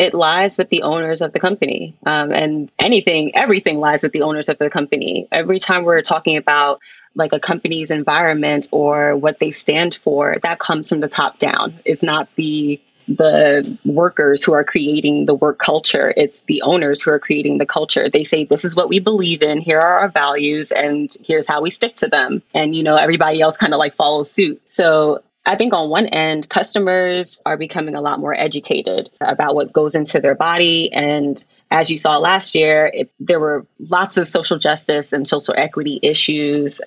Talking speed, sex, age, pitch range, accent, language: 200 wpm, female, 20-39, 150-170 Hz, American, English